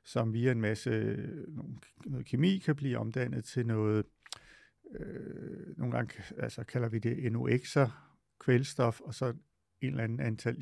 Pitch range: 115-135 Hz